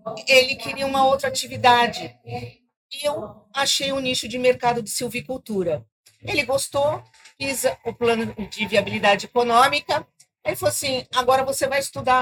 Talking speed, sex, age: 145 wpm, female, 50-69